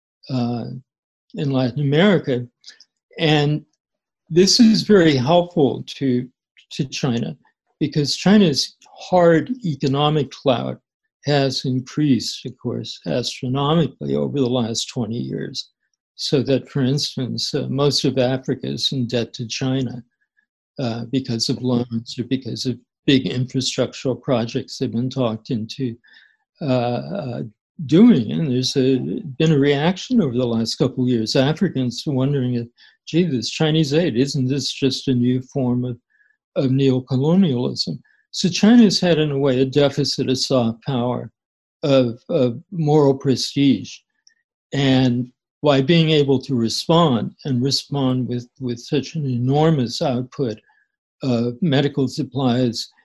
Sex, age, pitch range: male, 60-79, 125-155 Hz